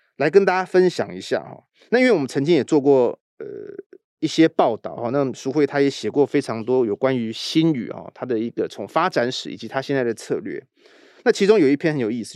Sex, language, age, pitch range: male, Chinese, 30-49, 120-175 Hz